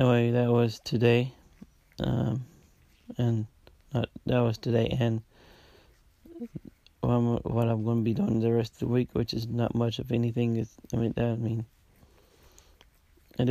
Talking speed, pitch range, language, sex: 165 wpm, 110-125 Hz, English, male